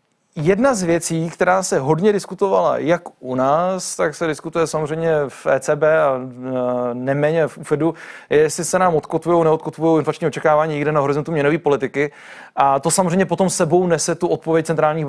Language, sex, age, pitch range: Czech, male, 30-49, 140-165 Hz